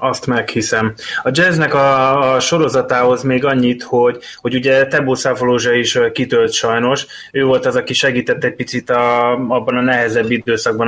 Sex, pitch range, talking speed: male, 115-135 Hz, 160 wpm